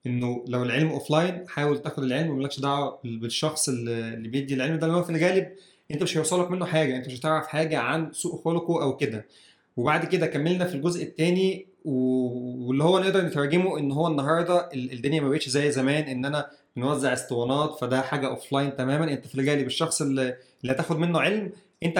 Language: Arabic